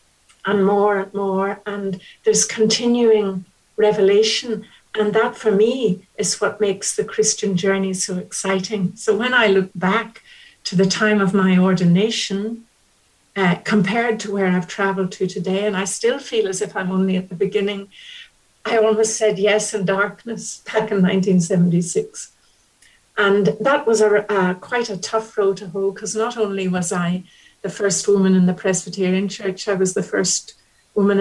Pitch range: 190-220 Hz